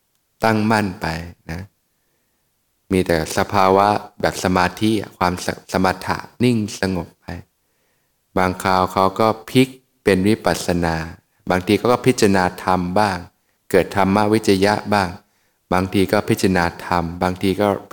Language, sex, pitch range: Thai, male, 90-105 Hz